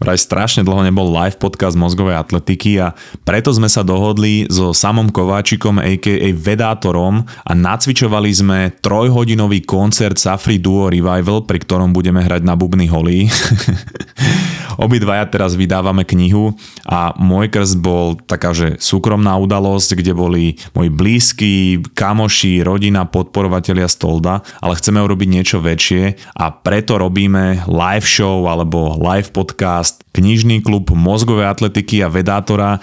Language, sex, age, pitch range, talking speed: Slovak, male, 30-49, 95-110 Hz, 130 wpm